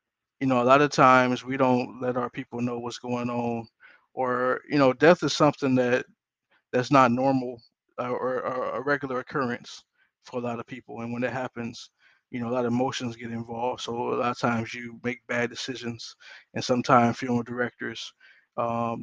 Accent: American